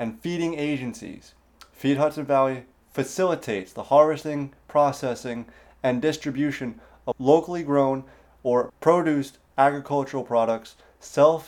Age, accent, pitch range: 30-49, American, 120-150 Hz